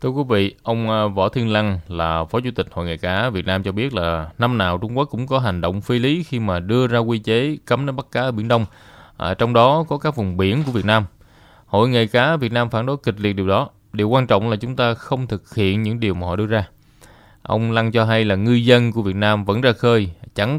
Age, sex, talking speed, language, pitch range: 20-39, male, 270 wpm, Vietnamese, 95-115 Hz